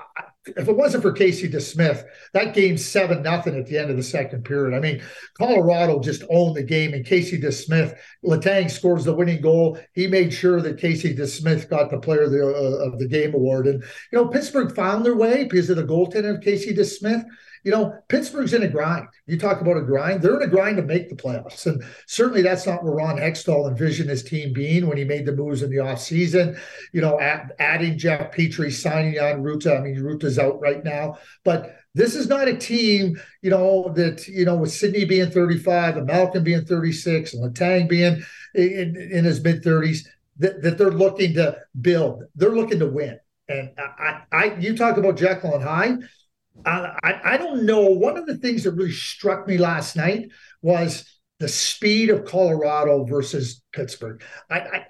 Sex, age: male, 50-69